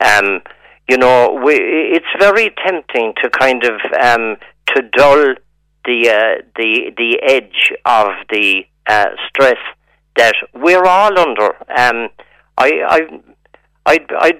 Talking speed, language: 130 wpm, English